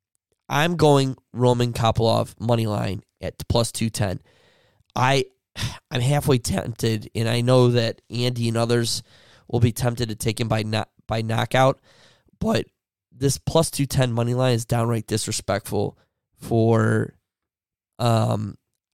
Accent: American